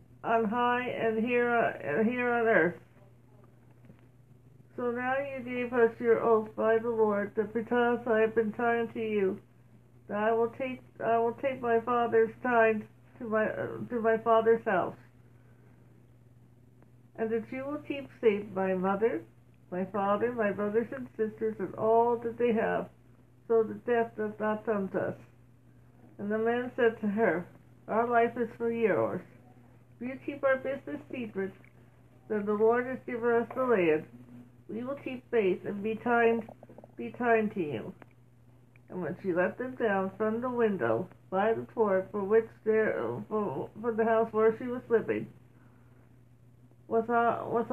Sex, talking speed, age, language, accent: female, 165 wpm, 60-79, English, American